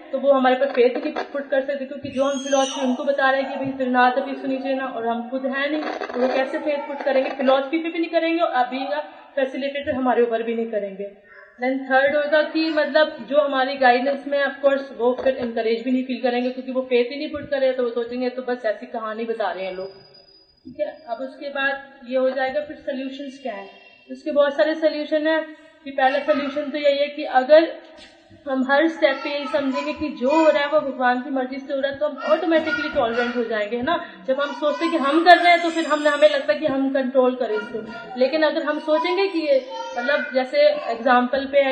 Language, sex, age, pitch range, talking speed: Hindi, female, 30-49, 260-295 Hz, 240 wpm